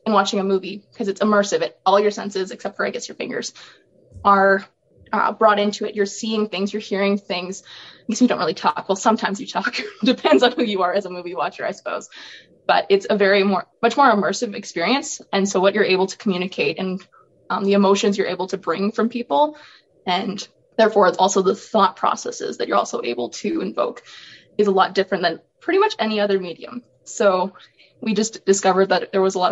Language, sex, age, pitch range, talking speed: English, female, 20-39, 195-225 Hz, 215 wpm